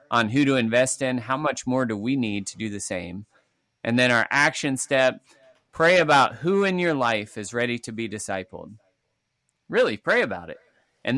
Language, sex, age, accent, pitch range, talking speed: English, male, 30-49, American, 115-155 Hz, 195 wpm